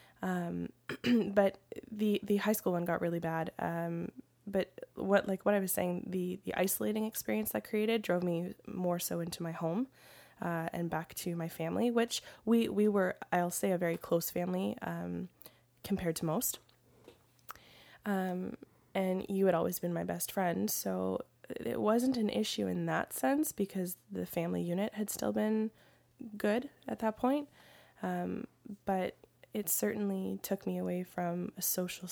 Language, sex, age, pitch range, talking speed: English, female, 10-29, 170-200 Hz, 165 wpm